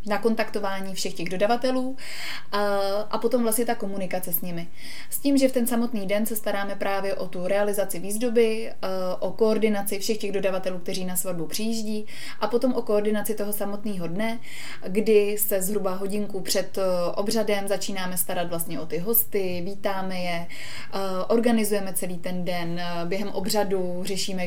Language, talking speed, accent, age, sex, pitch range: Czech, 155 wpm, native, 20-39, female, 185-210 Hz